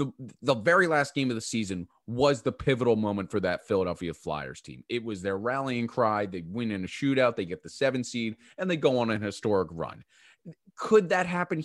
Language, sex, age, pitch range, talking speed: English, male, 30-49, 105-155 Hz, 215 wpm